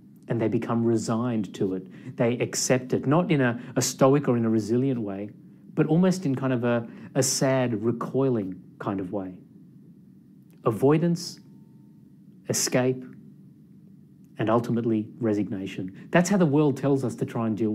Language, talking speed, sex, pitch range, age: English, 155 wpm, male, 115-150 Hz, 30-49